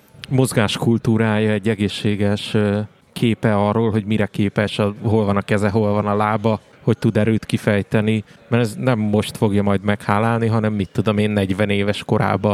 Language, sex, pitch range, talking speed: Hungarian, male, 105-115 Hz, 165 wpm